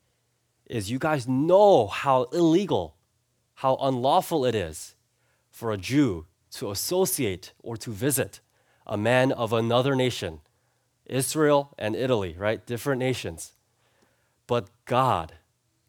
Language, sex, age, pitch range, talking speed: English, male, 30-49, 100-130 Hz, 115 wpm